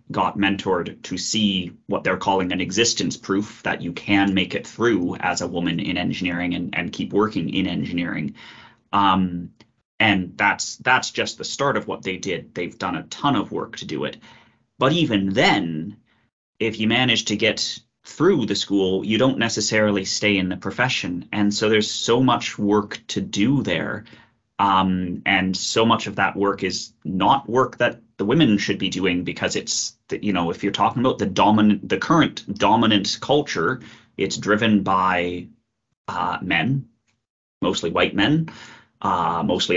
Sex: male